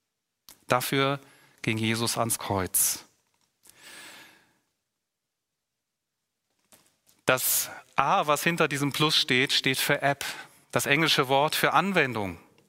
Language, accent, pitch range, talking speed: German, German, 125-150 Hz, 95 wpm